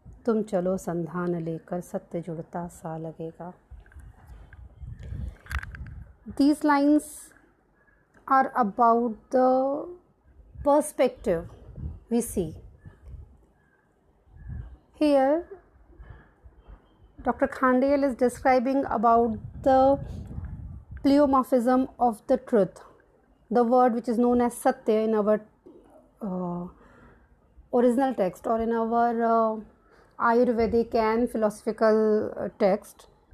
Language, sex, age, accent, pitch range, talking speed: English, female, 30-49, Indian, 225-285 Hz, 70 wpm